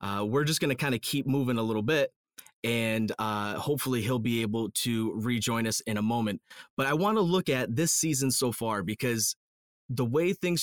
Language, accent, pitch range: English, American, 105-125 Hz